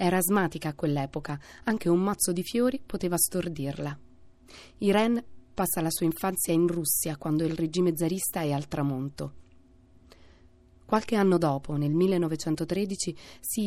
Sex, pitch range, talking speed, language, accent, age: female, 145-185 Hz, 135 wpm, Italian, native, 30-49